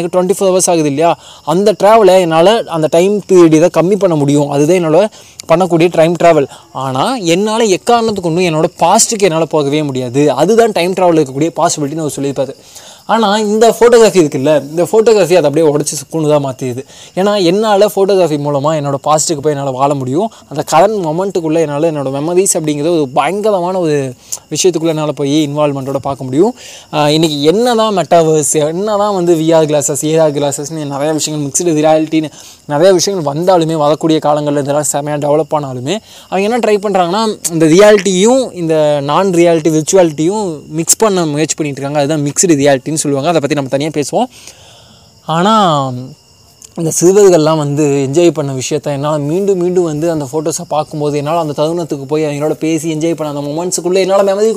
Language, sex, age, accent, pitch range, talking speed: Tamil, male, 20-39, native, 145-180 Hz, 105 wpm